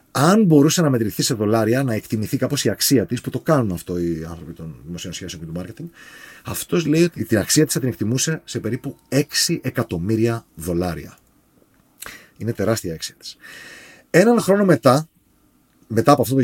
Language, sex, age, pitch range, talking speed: Greek, male, 30-49, 110-150 Hz, 180 wpm